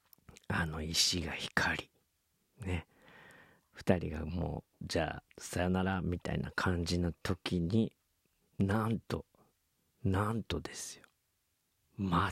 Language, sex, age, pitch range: Japanese, male, 40-59, 85-95 Hz